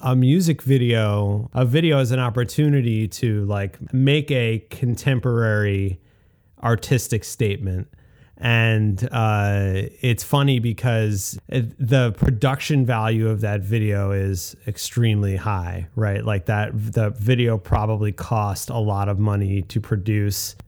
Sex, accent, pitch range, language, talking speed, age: male, American, 105-125 Hz, English, 125 wpm, 30-49